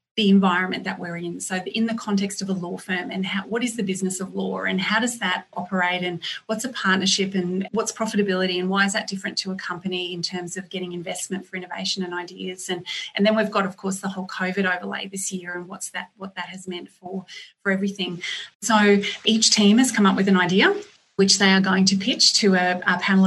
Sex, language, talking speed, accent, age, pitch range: female, English, 235 wpm, Australian, 30-49, 185-205 Hz